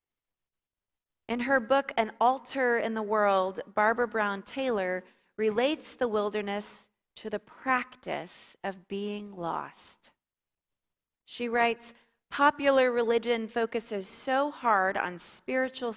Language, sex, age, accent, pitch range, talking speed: English, female, 30-49, American, 200-240 Hz, 110 wpm